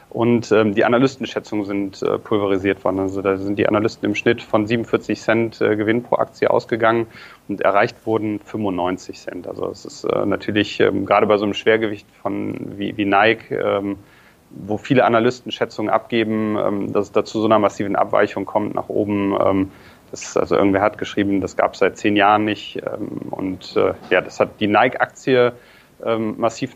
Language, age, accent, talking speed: German, 30-49, German, 185 wpm